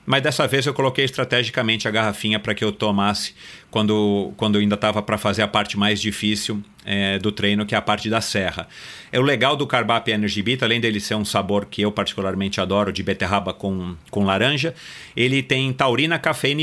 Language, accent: Portuguese, Brazilian